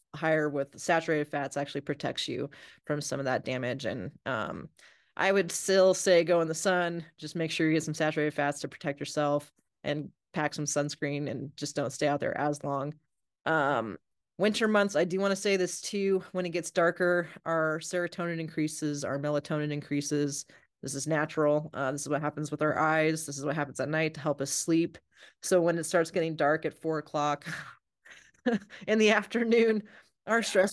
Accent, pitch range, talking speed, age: American, 150-175 Hz, 195 wpm, 30-49